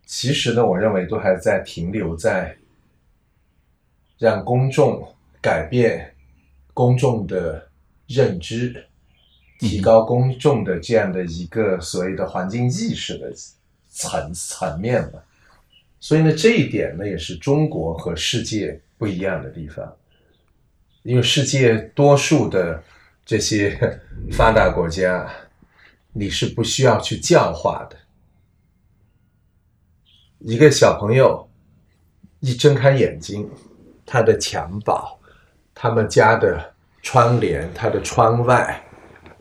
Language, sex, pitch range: Chinese, male, 90-125 Hz